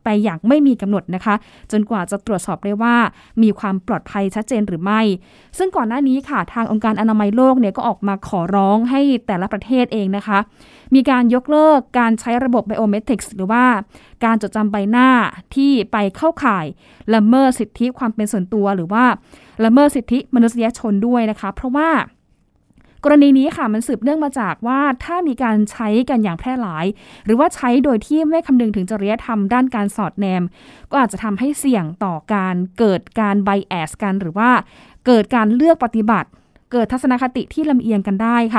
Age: 20-39